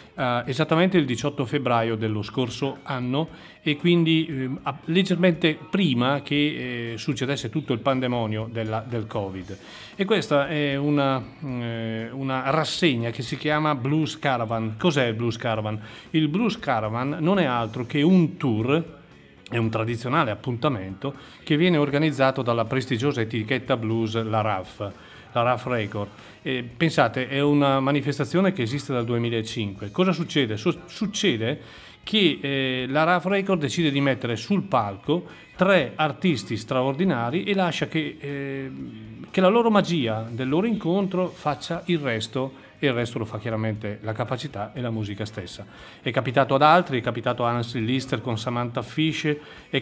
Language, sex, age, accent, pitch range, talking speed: Italian, male, 40-59, native, 115-155 Hz, 150 wpm